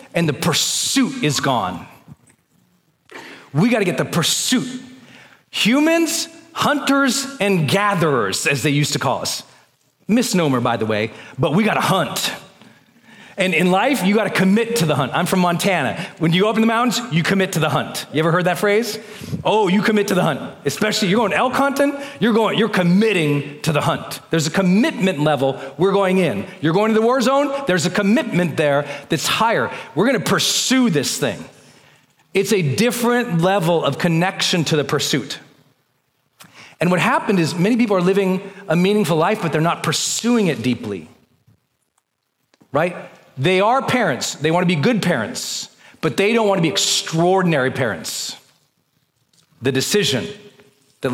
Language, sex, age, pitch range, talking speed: English, male, 40-59, 155-220 Hz, 170 wpm